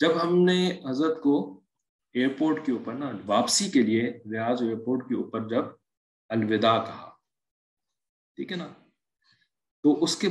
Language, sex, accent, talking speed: English, male, Indian, 135 wpm